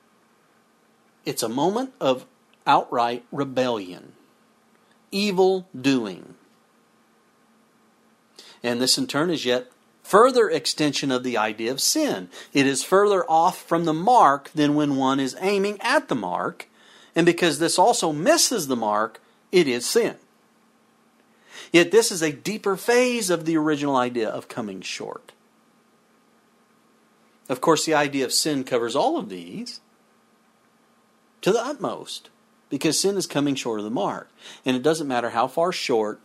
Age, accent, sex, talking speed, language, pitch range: 40-59, American, male, 145 wpm, English, 125-190 Hz